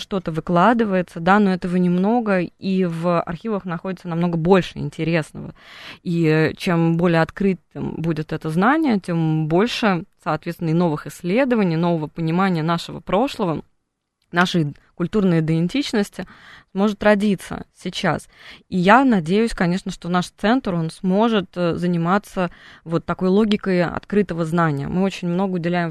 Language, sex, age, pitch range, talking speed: Russian, female, 20-39, 170-205 Hz, 125 wpm